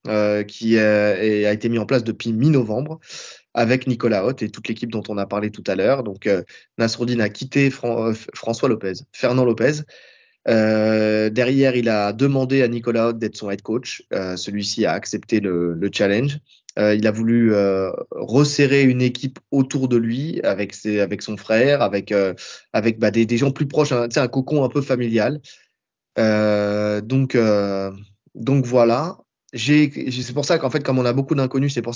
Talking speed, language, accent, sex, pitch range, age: 195 wpm, French, French, male, 110-130 Hz, 20-39